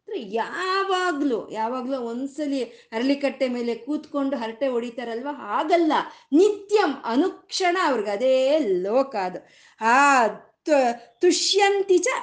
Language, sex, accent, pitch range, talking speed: Kannada, female, native, 225-320 Hz, 85 wpm